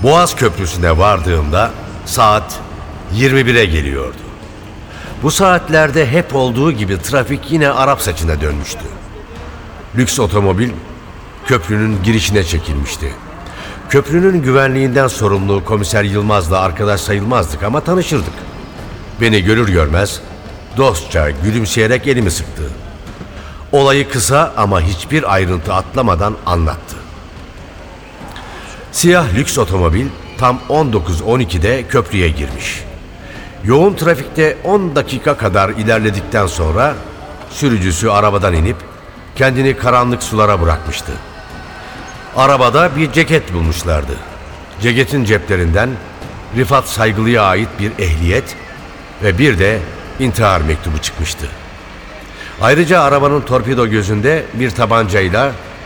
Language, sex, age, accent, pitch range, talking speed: Turkish, male, 60-79, native, 85-125 Hz, 95 wpm